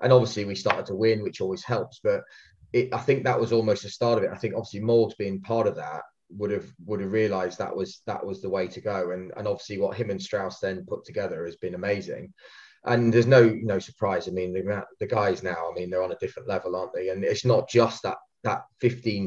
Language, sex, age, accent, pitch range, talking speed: English, male, 20-39, British, 95-115 Hz, 250 wpm